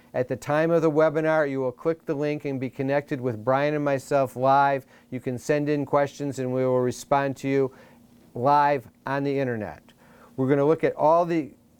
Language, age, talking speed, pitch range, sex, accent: English, 50-69, 210 wpm, 135-155 Hz, male, American